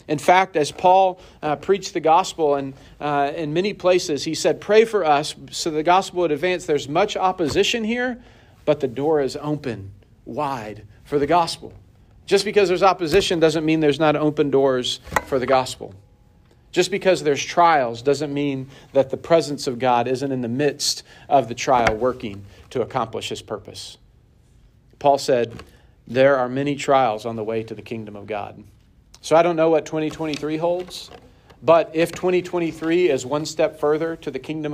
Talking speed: 180 wpm